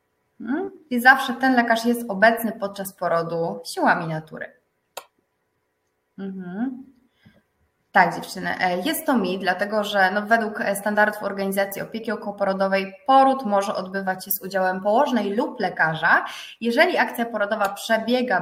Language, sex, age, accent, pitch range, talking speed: Polish, female, 20-39, native, 175-235 Hz, 115 wpm